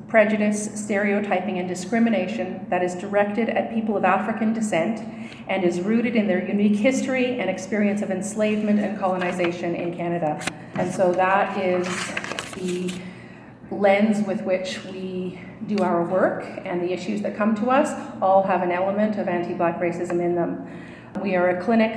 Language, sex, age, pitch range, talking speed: English, female, 40-59, 180-205 Hz, 160 wpm